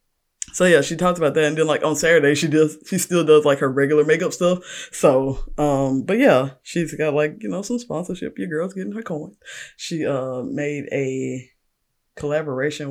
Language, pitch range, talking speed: English, 145-175 Hz, 195 wpm